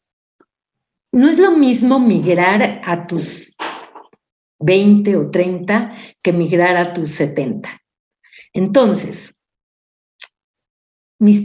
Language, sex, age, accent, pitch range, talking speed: Spanish, female, 50-69, Mexican, 165-215 Hz, 90 wpm